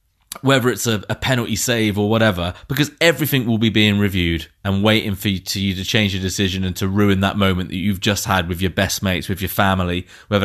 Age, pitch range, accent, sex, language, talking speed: 20-39, 95-120 Hz, British, male, English, 220 wpm